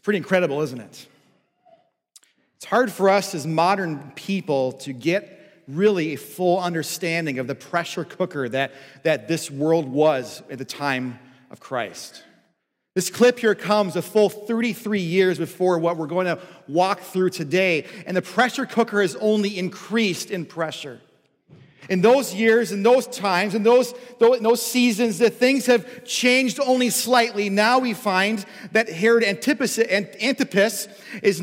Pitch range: 185-245 Hz